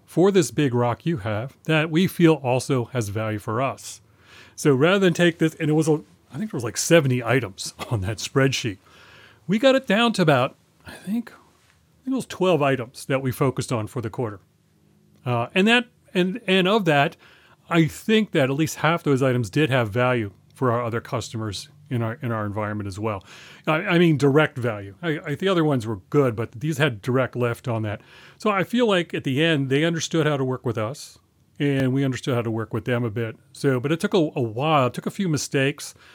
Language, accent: English, American